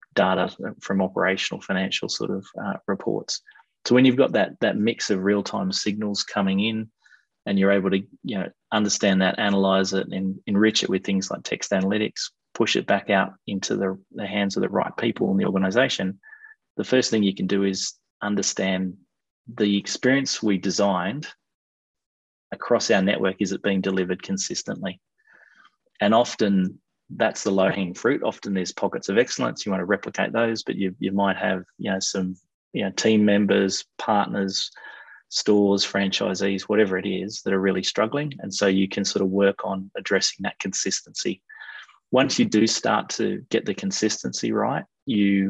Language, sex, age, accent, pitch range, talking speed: English, male, 20-39, Australian, 95-110 Hz, 175 wpm